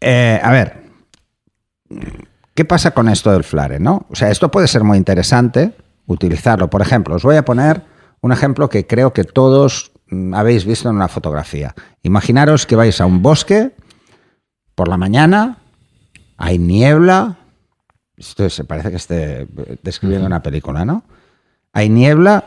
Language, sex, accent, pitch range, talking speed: Spanish, male, Spanish, 95-130 Hz, 150 wpm